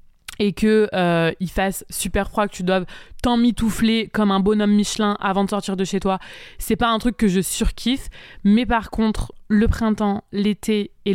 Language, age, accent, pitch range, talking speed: French, 20-39, French, 185-215 Hz, 190 wpm